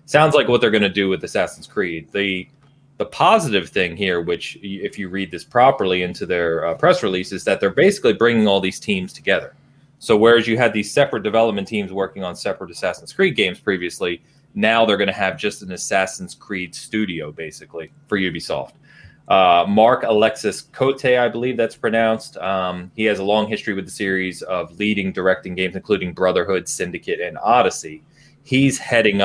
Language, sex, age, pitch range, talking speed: English, male, 30-49, 90-115 Hz, 185 wpm